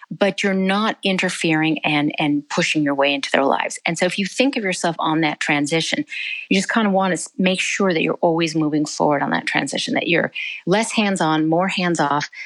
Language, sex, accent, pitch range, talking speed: English, female, American, 160-210 Hz, 210 wpm